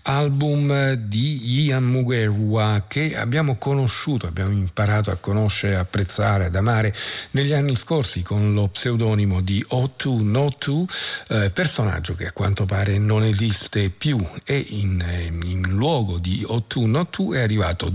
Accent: native